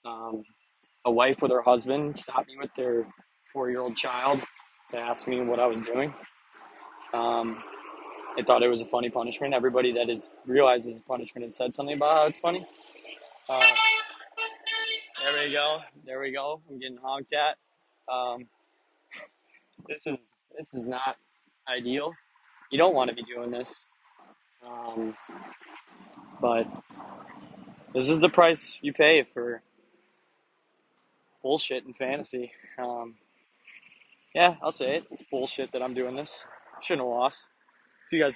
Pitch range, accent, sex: 120-140 Hz, American, male